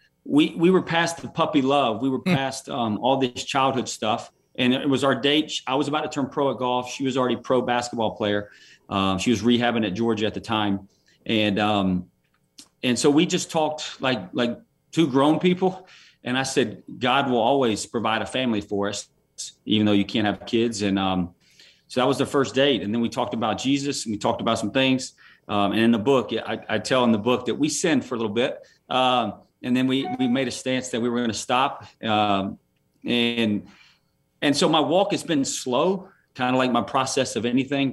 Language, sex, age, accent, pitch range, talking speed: English, male, 40-59, American, 105-135 Hz, 220 wpm